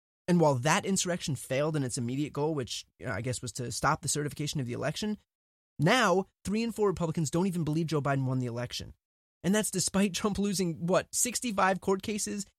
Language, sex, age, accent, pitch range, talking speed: English, male, 20-39, American, 145-200 Hz, 200 wpm